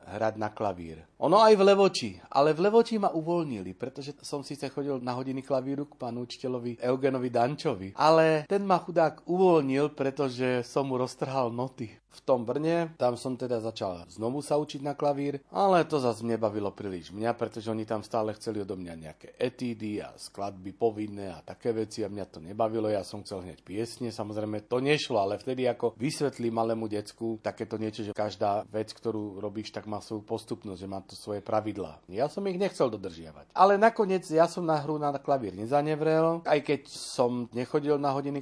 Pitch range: 110-145 Hz